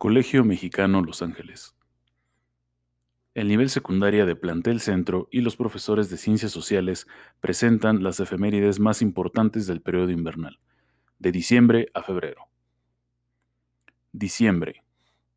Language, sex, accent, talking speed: Spanish, male, Mexican, 115 wpm